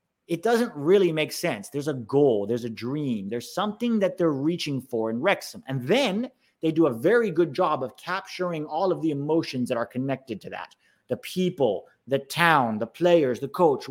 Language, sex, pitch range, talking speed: English, male, 140-195 Hz, 200 wpm